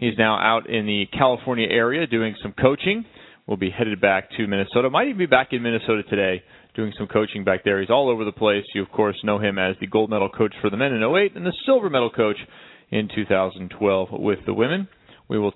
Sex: male